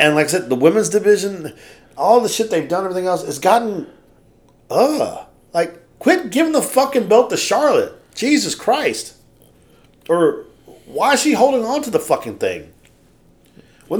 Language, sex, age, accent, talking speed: English, male, 40-59, American, 165 wpm